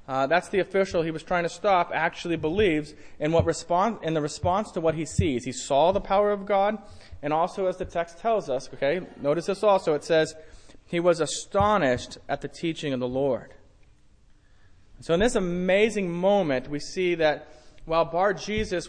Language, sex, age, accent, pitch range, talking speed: English, male, 30-49, American, 135-180 Hz, 180 wpm